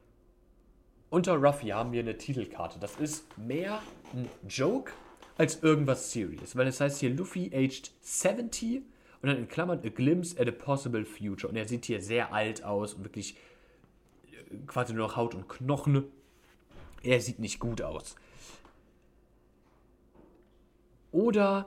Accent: German